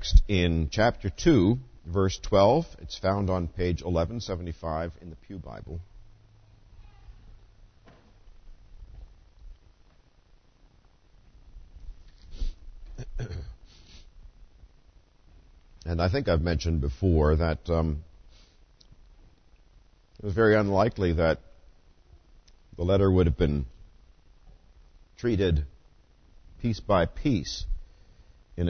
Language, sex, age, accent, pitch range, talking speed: English, male, 50-69, American, 80-95 Hz, 75 wpm